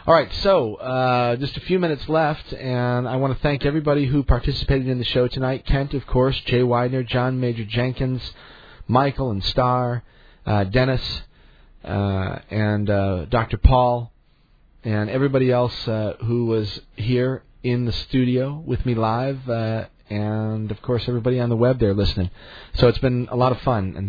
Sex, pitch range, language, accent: male, 100-125 Hz, English, American